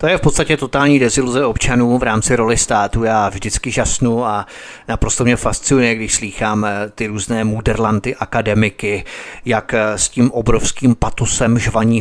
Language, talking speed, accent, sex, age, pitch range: Czech, 150 wpm, native, male, 30-49, 110-125 Hz